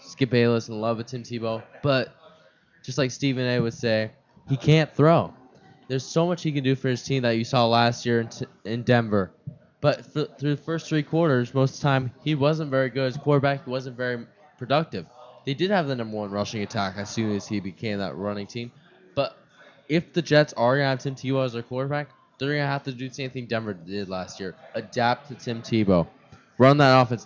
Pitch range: 120-145 Hz